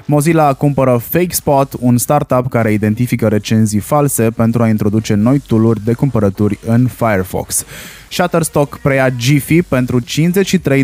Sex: male